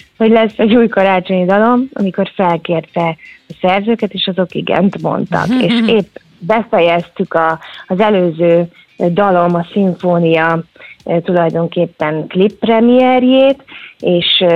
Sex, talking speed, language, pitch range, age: female, 105 wpm, Hungarian, 175-230 Hz, 30-49